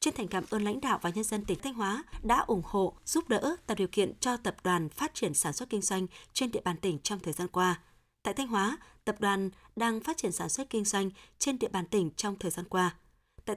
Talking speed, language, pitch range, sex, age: 255 wpm, Vietnamese, 185-230 Hz, female, 20-39